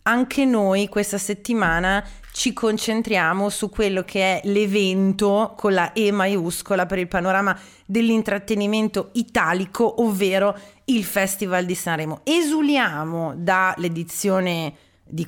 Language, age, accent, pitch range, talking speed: Italian, 30-49, native, 180-220 Hz, 110 wpm